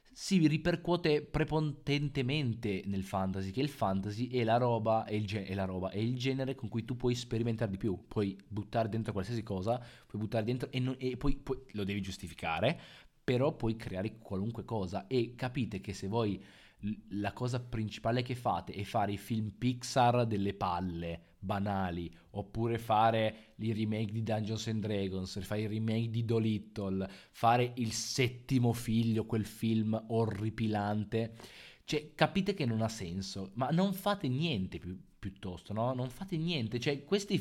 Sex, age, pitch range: male, 20-39, 100-130 Hz